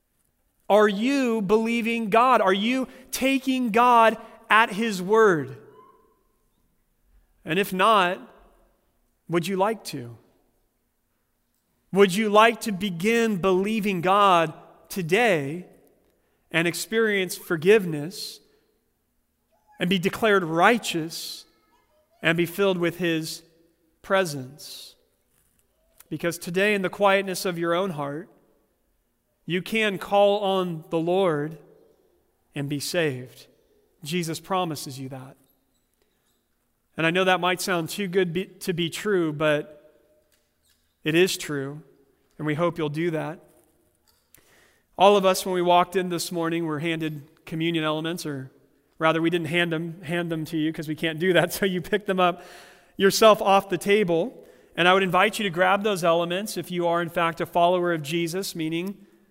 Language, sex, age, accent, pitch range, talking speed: English, male, 40-59, American, 160-200 Hz, 140 wpm